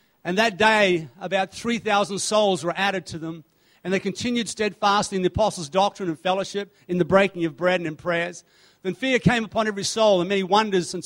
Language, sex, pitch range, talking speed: English, male, 185-230 Hz, 205 wpm